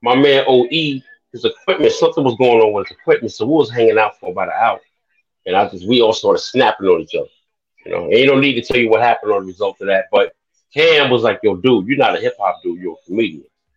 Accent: American